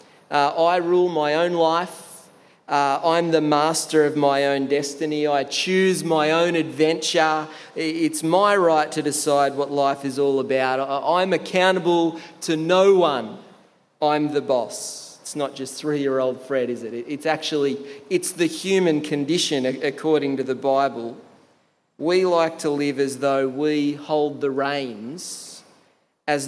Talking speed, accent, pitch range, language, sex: 145 wpm, Australian, 135-160 Hz, English, male